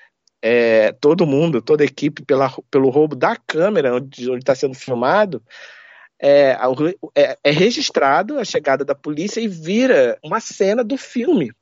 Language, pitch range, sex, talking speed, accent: Portuguese, 130-200 Hz, male, 145 wpm, Brazilian